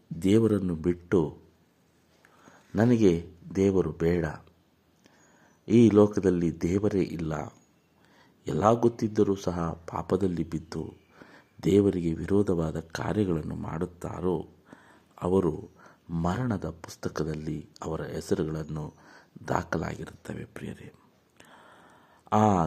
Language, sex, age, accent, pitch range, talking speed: Kannada, male, 50-69, native, 80-100 Hz, 70 wpm